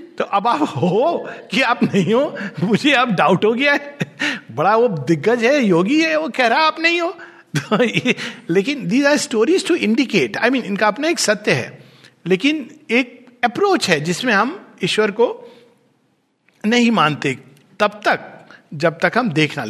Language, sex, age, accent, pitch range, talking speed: Hindi, male, 50-69, native, 190-280 Hz, 145 wpm